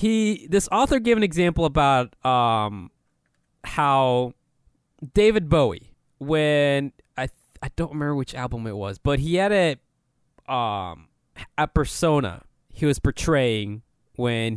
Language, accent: English, American